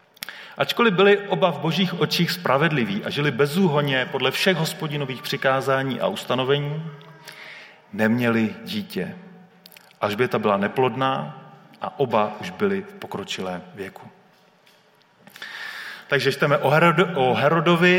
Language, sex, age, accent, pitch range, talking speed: Czech, male, 30-49, native, 135-185 Hz, 115 wpm